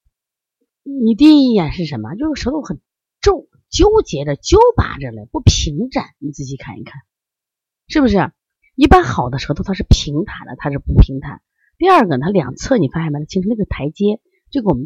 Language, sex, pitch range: Chinese, female, 140-225 Hz